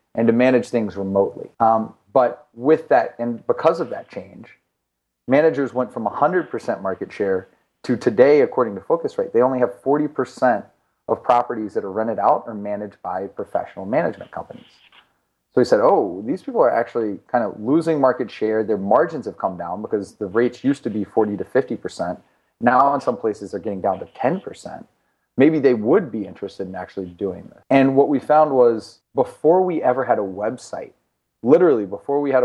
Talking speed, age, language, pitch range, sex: 185 wpm, 30-49, English, 105-140 Hz, male